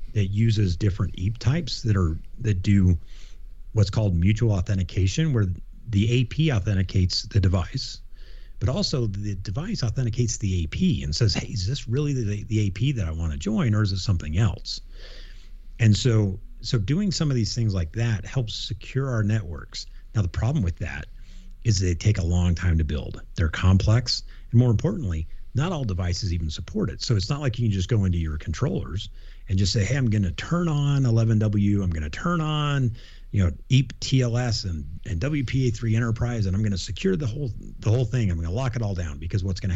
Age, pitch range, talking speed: 40-59, 90-115 Hz, 200 wpm